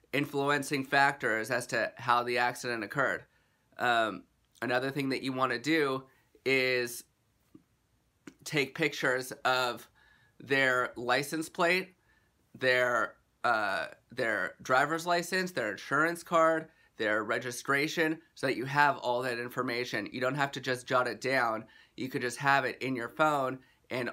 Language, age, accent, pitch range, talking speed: English, 30-49, American, 125-145 Hz, 140 wpm